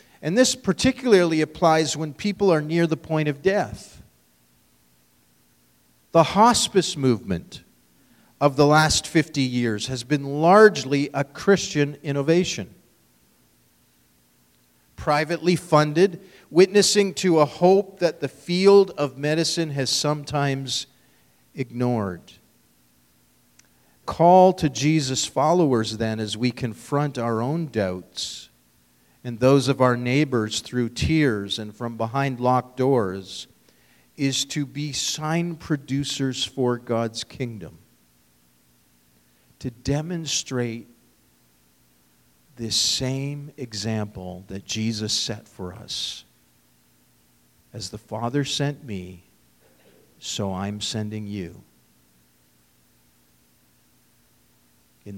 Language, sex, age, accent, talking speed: English, male, 40-59, American, 100 wpm